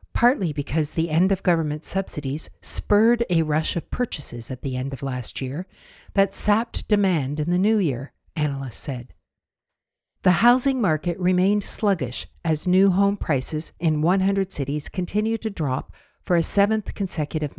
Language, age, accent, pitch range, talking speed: English, 60-79, American, 145-190 Hz, 150 wpm